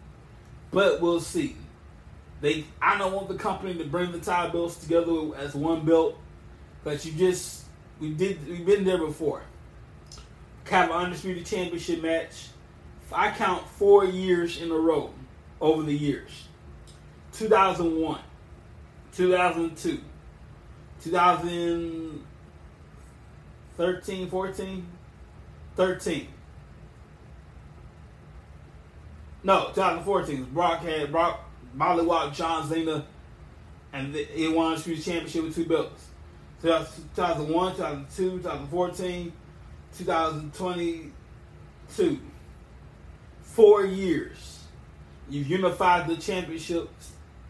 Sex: male